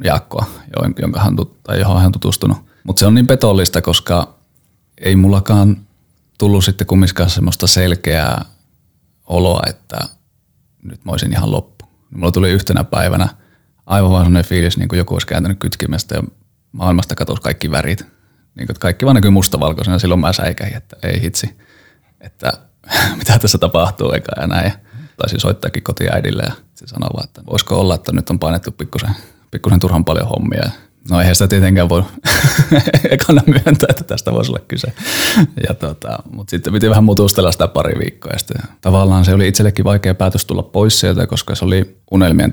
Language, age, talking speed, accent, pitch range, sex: Finnish, 30-49, 165 wpm, native, 90-110 Hz, male